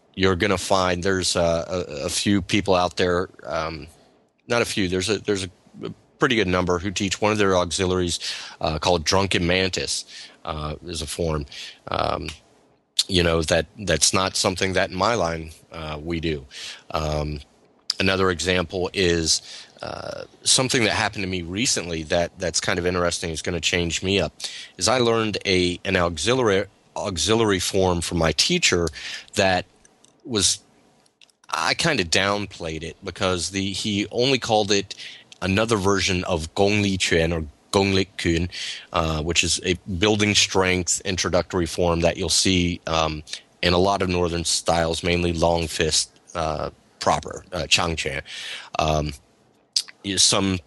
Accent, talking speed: American, 155 wpm